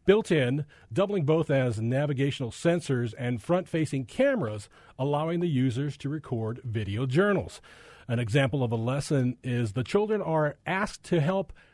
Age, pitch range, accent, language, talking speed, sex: 40-59, 125-175 Hz, American, English, 150 wpm, male